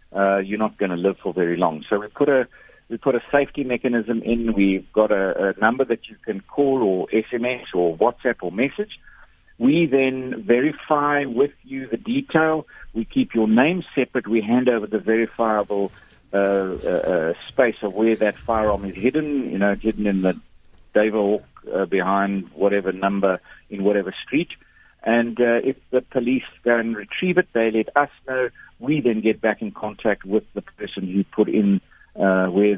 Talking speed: 185 wpm